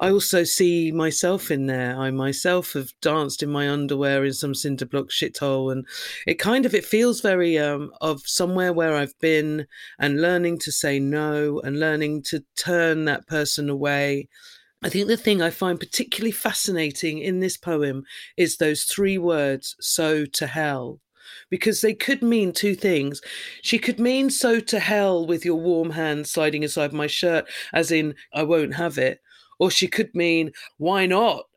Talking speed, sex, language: 175 wpm, female, English